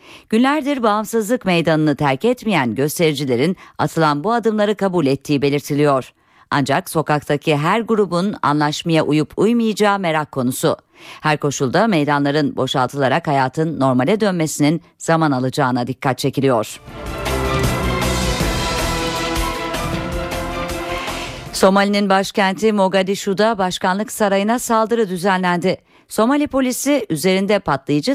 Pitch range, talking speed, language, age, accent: 150-210 Hz, 90 wpm, Turkish, 50-69, native